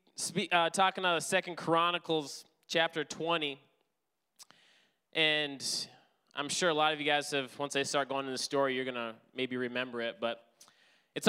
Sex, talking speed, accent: male, 170 wpm, American